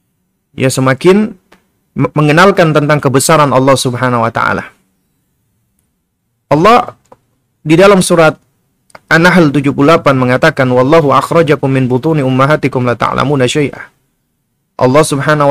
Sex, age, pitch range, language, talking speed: male, 30-49, 135-180 Hz, Indonesian, 100 wpm